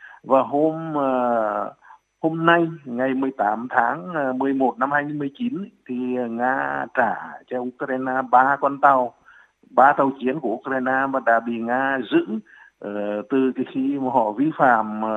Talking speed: 145 wpm